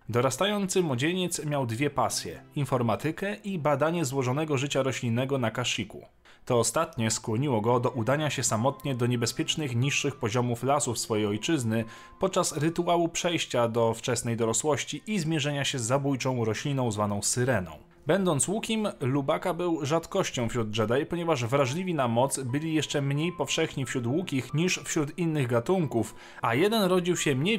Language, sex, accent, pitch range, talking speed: Polish, male, native, 120-165 Hz, 150 wpm